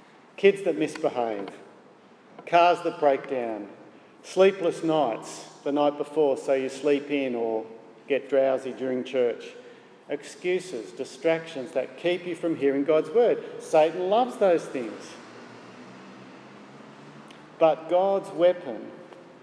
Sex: male